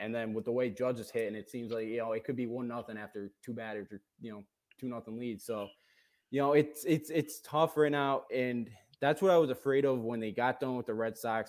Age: 20-39